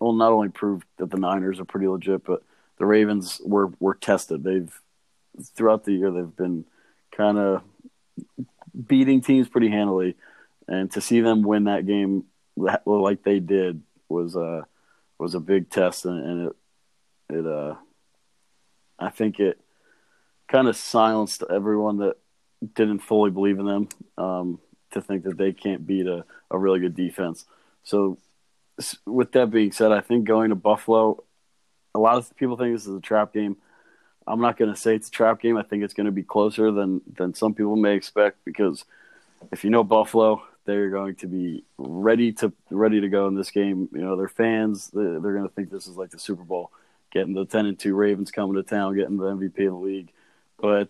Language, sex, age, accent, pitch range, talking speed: English, male, 40-59, American, 95-110 Hz, 190 wpm